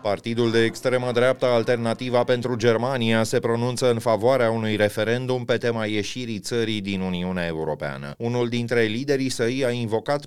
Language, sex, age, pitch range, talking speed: Romanian, male, 30-49, 100-125 Hz, 150 wpm